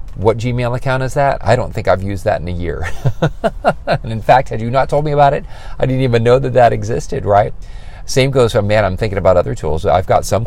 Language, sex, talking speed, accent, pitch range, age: English, male, 250 wpm, American, 90-115 Hz, 40-59